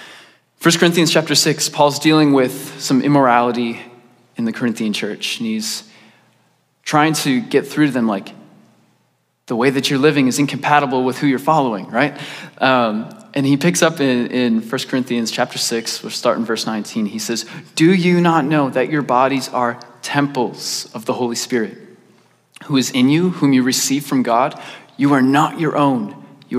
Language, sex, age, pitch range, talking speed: English, male, 20-39, 120-145 Hz, 180 wpm